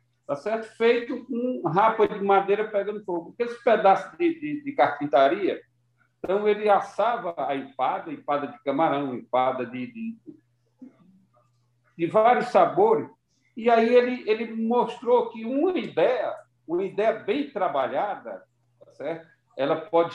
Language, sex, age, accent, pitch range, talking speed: Portuguese, male, 60-79, Brazilian, 125-205 Hz, 145 wpm